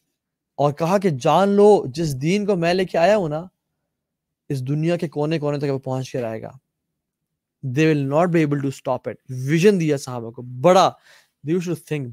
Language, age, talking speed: Urdu, 20-39, 185 wpm